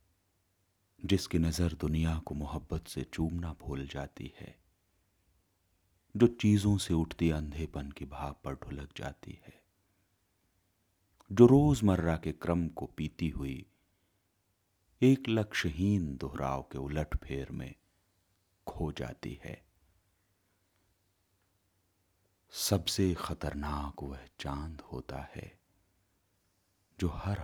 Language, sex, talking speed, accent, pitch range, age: Hindi, male, 100 wpm, native, 80-100 Hz, 40-59